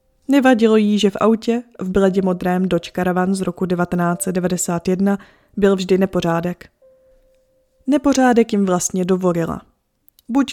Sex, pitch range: female, 185-235 Hz